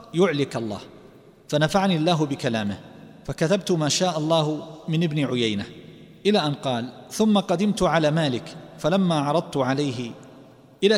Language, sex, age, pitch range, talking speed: Arabic, male, 50-69, 140-185 Hz, 125 wpm